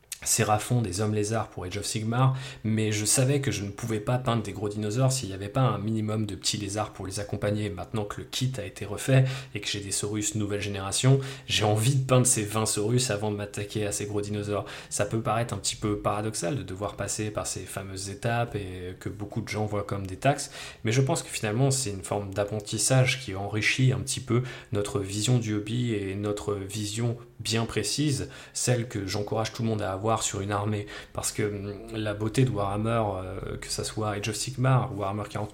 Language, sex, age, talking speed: French, male, 20-39, 220 wpm